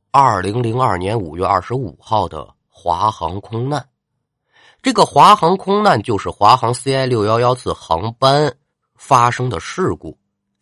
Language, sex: Chinese, male